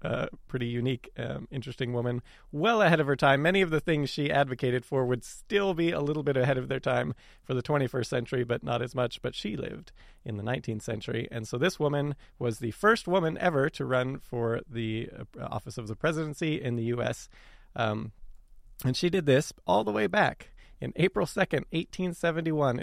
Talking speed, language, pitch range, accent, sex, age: 200 wpm, English, 120-160 Hz, American, male, 30-49